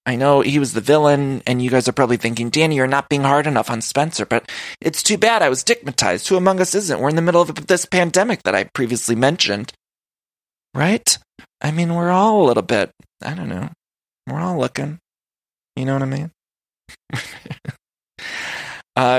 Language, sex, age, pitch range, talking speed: English, male, 20-39, 120-160 Hz, 190 wpm